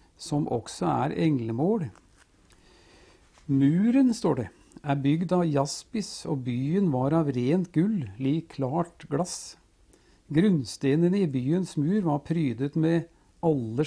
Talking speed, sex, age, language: 130 wpm, male, 60-79, English